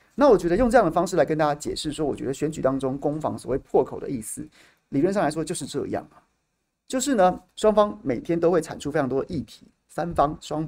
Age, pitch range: 30-49, 135-165 Hz